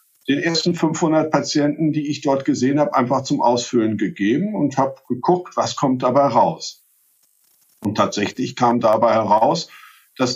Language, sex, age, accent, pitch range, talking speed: German, male, 50-69, German, 125-155 Hz, 150 wpm